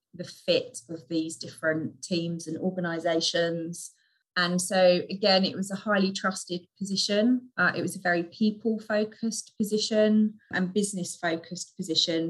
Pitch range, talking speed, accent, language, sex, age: 165-190 Hz, 130 wpm, British, English, female, 20-39